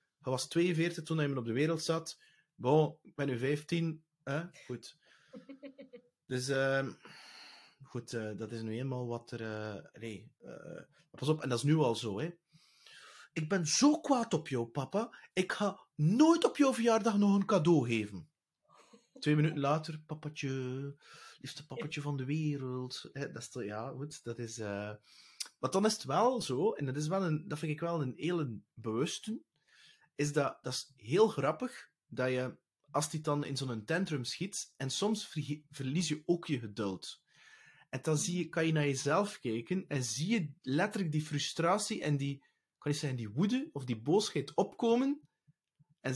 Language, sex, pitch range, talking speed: English, male, 130-170 Hz, 185 wpm